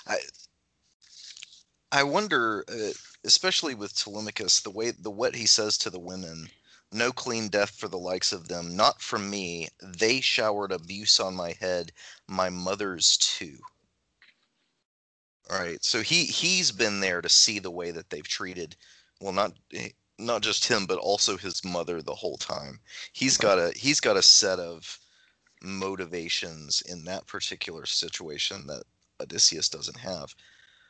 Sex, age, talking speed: male, 30-49, 155 wpm